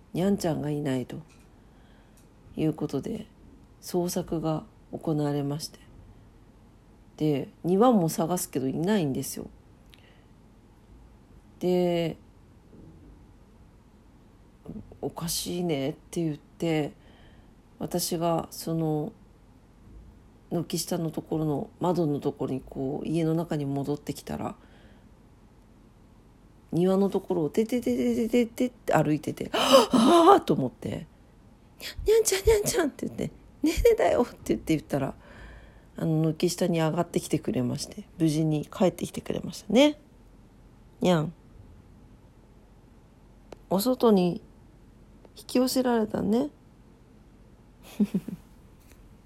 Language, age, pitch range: Japanese, 40-59, 130-190 Hz